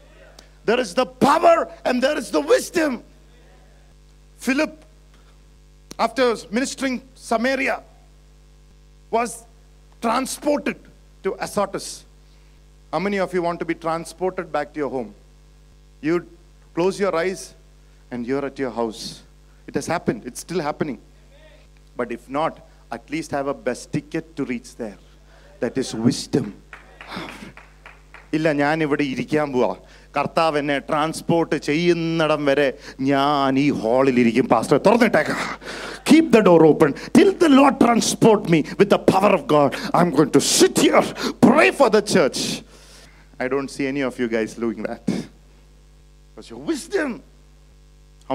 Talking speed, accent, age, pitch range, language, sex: 120 wpm, Indian, 50-69, 135-205 Hz, English, male